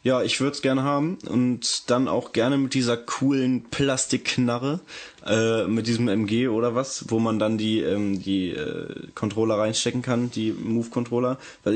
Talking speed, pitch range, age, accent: 170 wpm, 110-135 Hz, 20-39, German